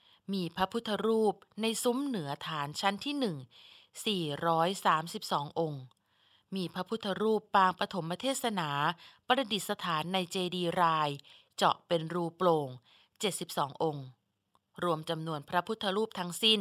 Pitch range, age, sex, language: 165-215 Hz, 20-39, female, Thai